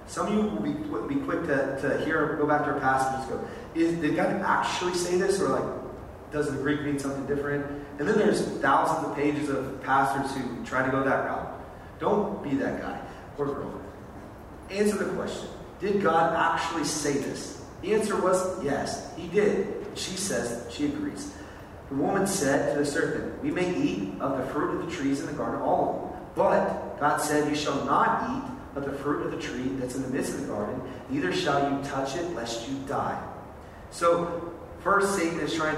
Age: 30-49